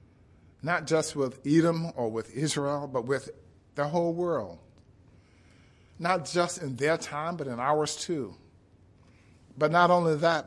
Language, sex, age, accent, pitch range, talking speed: English, male, 50-69, American, 100-150 Hz, 145 wpm